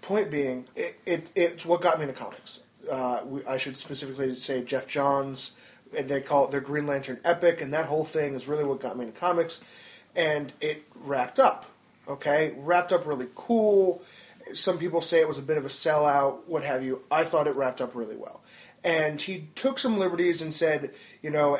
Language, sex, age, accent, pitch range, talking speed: English, male, 30-49, American, 135-170 Hz, 210 wpm